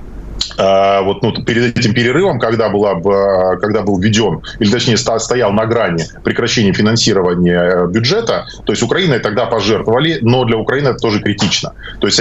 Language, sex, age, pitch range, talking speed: Russian, male, 20-39, 105-120 Hz, 145 wpm